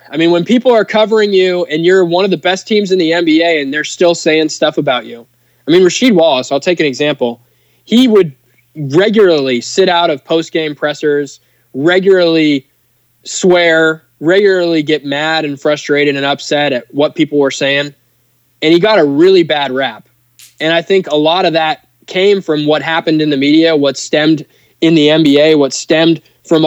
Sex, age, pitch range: male, 20-39, 140-175 Hz